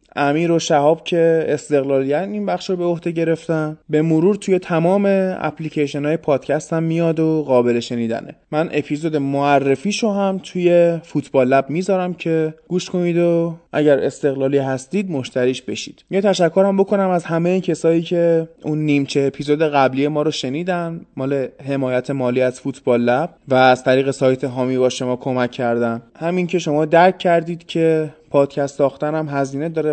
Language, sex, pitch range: Persian, male, 140-175 Hz